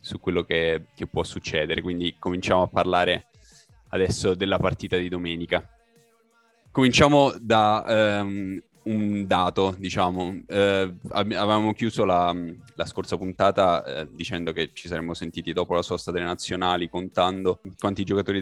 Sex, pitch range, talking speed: male, 90-100 Hz, 125 wpm